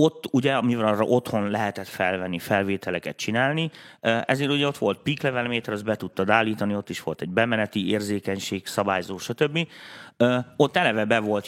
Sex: male